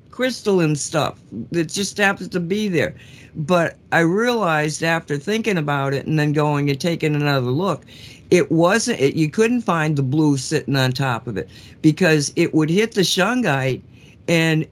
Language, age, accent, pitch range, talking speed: English, 60-79, American, 150-195 Hz, 170 wpm